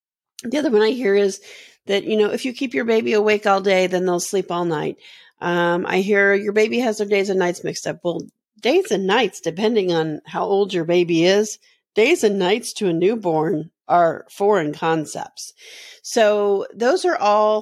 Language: English